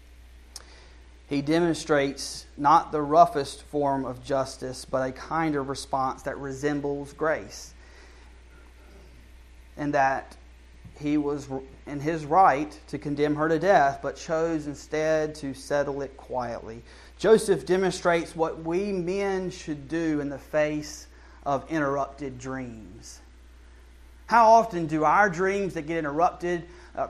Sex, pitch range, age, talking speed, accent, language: male, 115-180 Hz, 30-49, 125 wpm, American, English